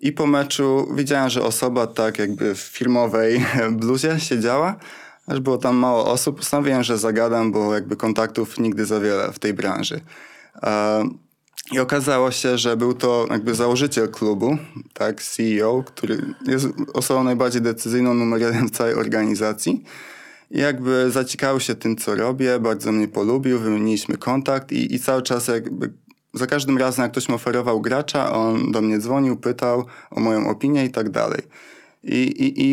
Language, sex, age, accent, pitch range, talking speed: Polish, male, 20-39, native, 110-130 Hz, 160 wpm